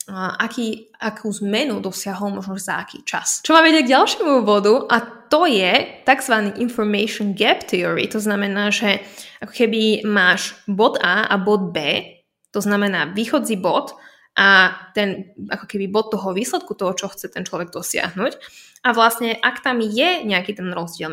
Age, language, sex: 20-39, Slovak, female